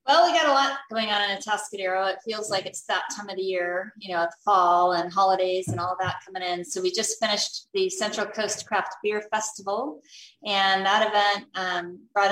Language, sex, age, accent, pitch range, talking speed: English, female, 30-49, American, 175-215 Hz, 210 wpm